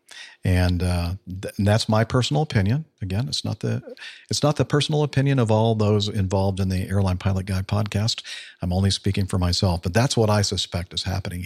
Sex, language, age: male, English, 50-69